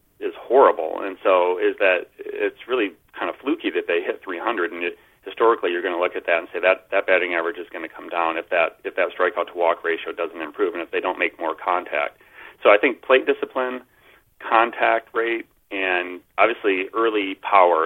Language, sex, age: English, male, 40-59